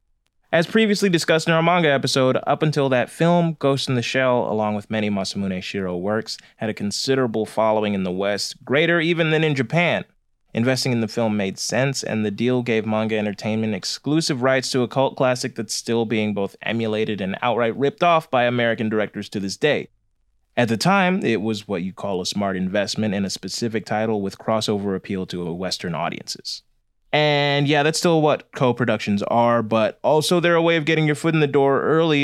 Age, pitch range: 20-39, 105-135 Hz